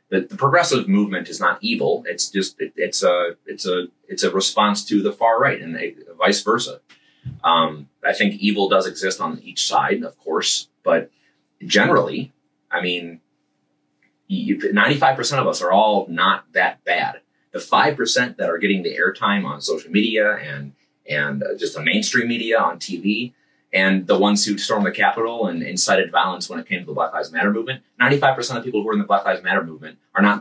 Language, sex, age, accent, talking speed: English, male, 30-49, American, 195 wpm